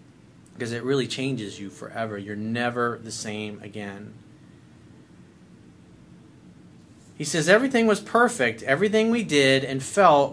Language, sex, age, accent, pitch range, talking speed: English, male, 40-59, American, 120-160 Hz, 120 wpm